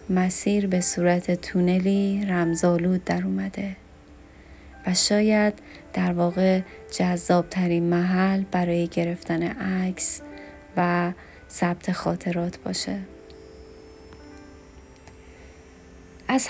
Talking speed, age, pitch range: 75 wpm, 30-49, 165-195 Hz